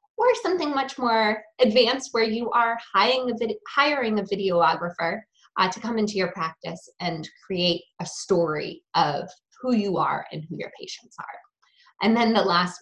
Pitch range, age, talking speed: 180-260 Hz, 20-39, 165 wpm